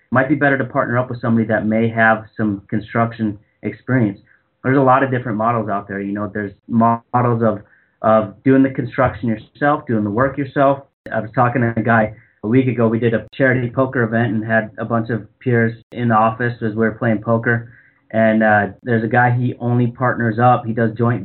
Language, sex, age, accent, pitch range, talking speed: English, male, 30-49, American, 110-120 Hz, 215 wpm